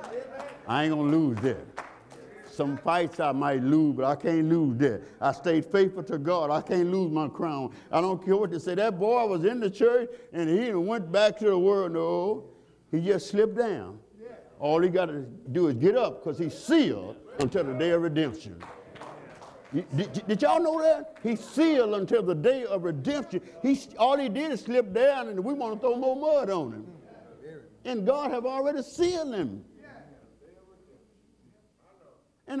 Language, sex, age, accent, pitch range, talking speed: English, male, 60-79, American, 160-235 Hz, 180 wpm